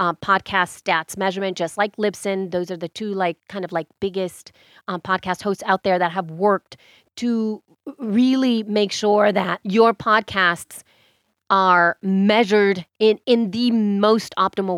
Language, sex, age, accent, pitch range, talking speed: English, female, 30-49, American, 185-220 Hz, 155 wpm